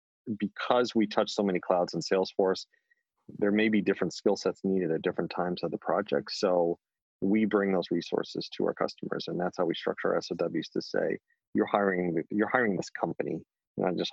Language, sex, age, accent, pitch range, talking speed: English, male, 30-49, American, 90-110 Hz, 195 wpm